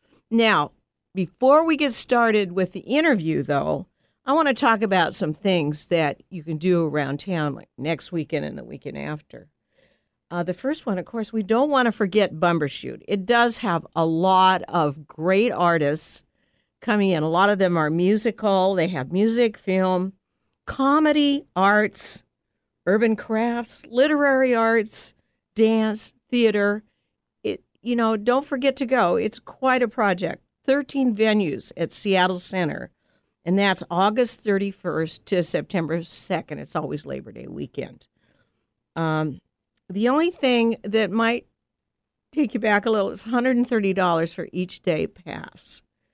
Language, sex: English, female